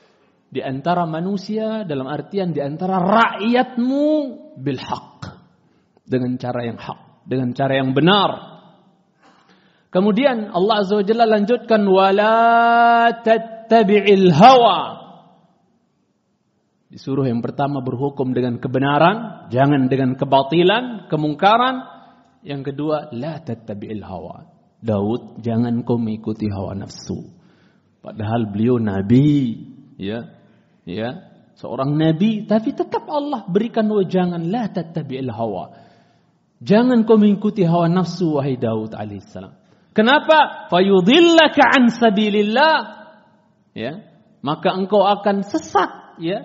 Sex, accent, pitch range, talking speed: male, native, 140-230 Hz, 100 wpm